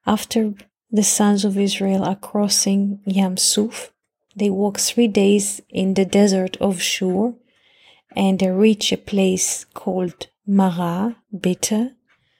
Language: English